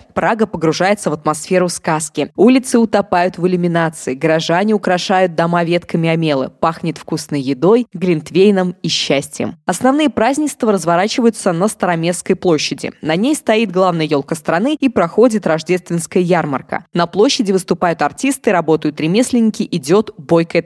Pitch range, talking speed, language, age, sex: 165-215 Hz, 130 wpm, Russian, 20-39, female